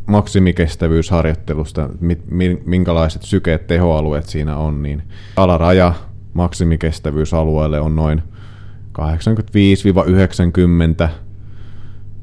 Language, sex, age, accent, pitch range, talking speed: Finnish, male, 30-49, native, 75-100 Hz, 60 wpm